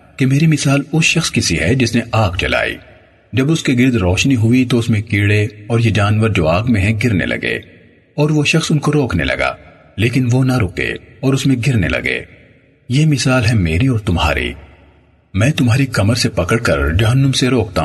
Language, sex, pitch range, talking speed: Urdu, male, 90-130 Hz, 210 wpm